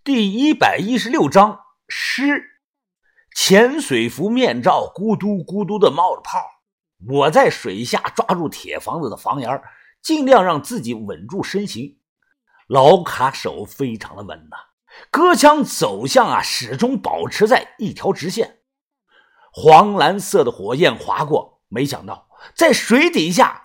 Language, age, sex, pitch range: Chinese, 50-69, male, 175-280 Hz